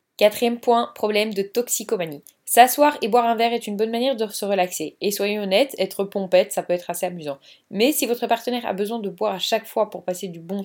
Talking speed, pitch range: 235 wpm, 190-230 Hz